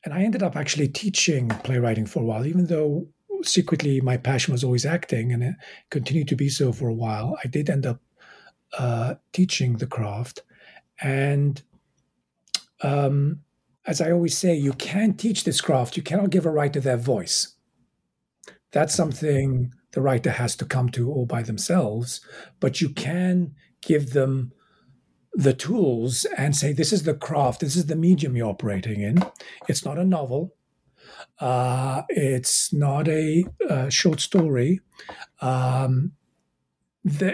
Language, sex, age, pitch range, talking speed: English, male, 50-69, 130-175 Hz, 155 wpm